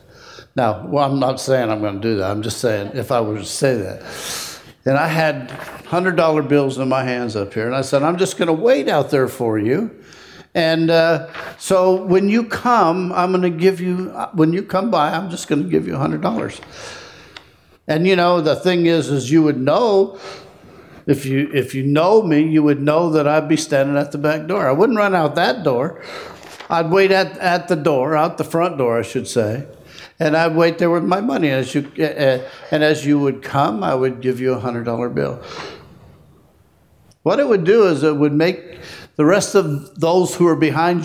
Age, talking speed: 60-79, 210 wpm